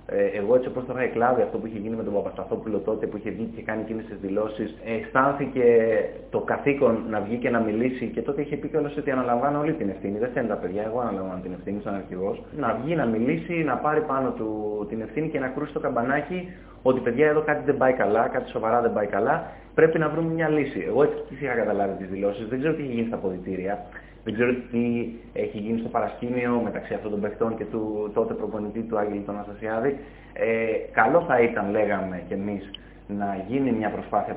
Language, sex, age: Greek, male, 20-39